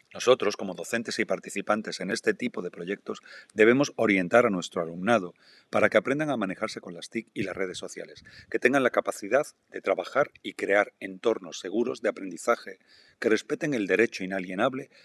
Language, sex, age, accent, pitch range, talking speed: Spanish, male, 40-59, Spanish, 100-125 Hz, 175 wpm